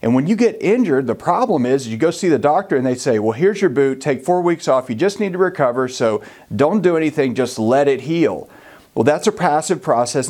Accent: American